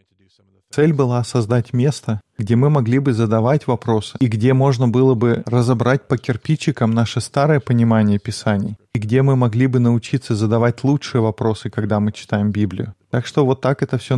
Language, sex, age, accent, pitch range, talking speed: Russian, male, 20-39, native, 110-130 Hz, 175 wpm